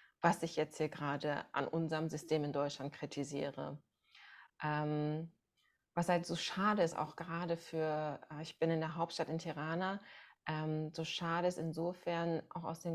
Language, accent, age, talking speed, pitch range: German, German, 20-39, 160 wpm, 155-170 Hz